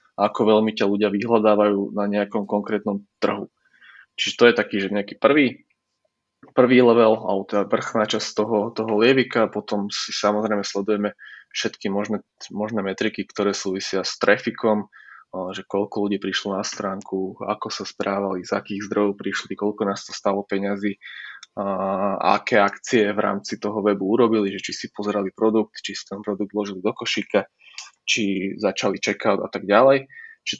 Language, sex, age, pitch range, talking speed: Slovak, male, 20-39, 100-110 Hz, 160 wpm